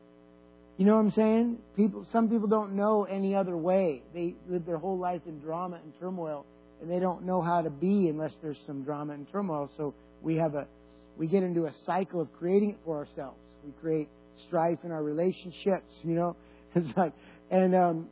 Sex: male